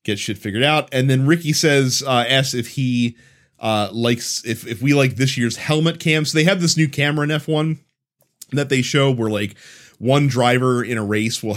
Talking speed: 215 wpm